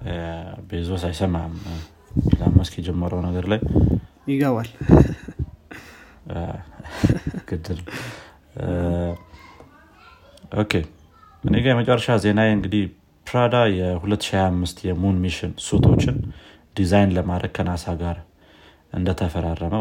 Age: 30-49